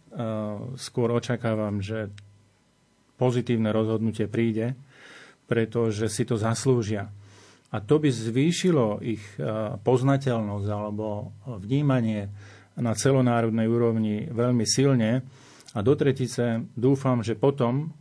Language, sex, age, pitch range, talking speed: Slovak, male, 40-59, 110-125 Hz, 95 wpm